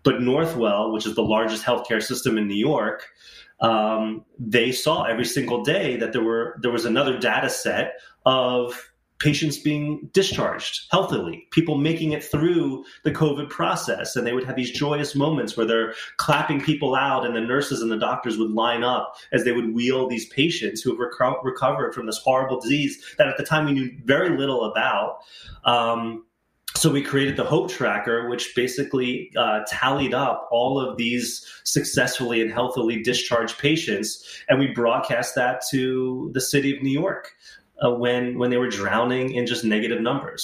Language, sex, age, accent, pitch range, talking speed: English, male, 30-49, American, 115-145 Hz, 180 wpm